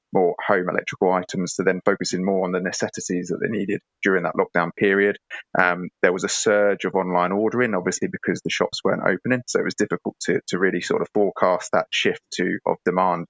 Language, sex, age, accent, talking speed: English, male, 20-39, British, 210 wpm